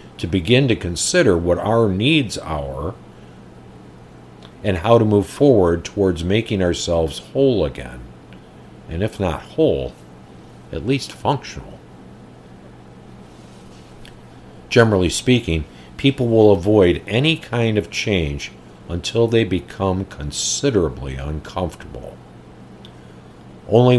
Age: 50-69